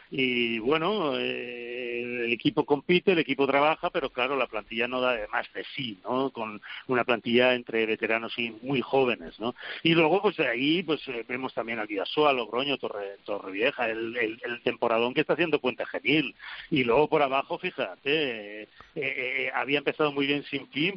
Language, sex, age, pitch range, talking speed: Spanish, male, 40-59, 120-145 Hz, 180 wpm